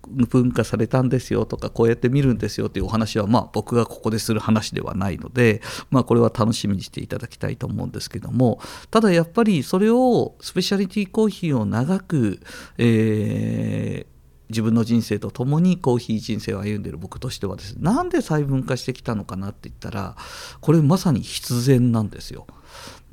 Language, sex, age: Japanese, male, 50-69